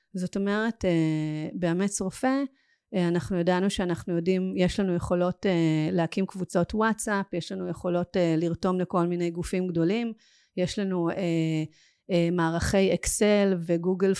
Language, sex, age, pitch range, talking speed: Hebrew, female, 30-49, 175-205 Hz, 115 wpm